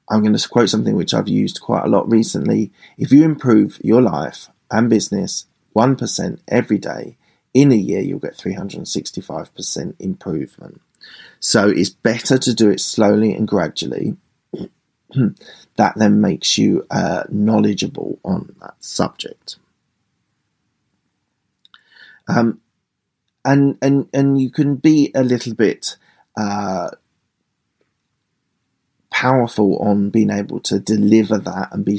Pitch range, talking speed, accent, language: 100-115 Hz, 125 wpm, British, English